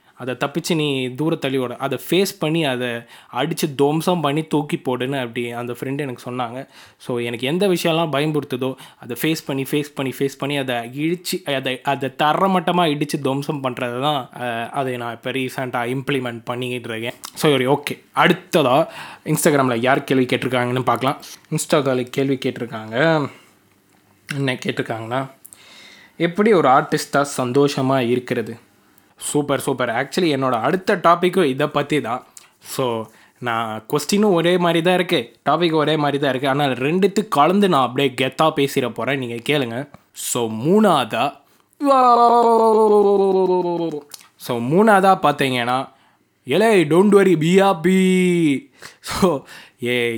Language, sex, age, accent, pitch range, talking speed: Tamil, male, 20-39, native, 125-170 Hz, 130 wpm